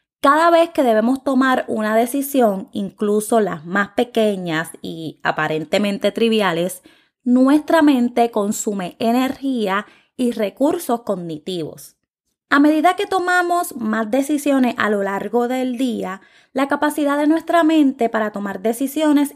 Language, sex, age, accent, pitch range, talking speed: Spanish, female, 20-39, American, 205-275 Hz, 125 wpm